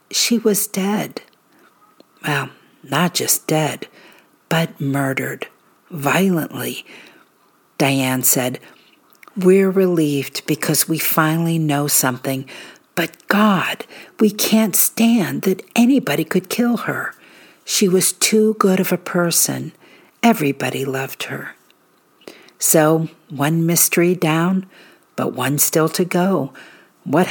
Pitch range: 145-200 Hz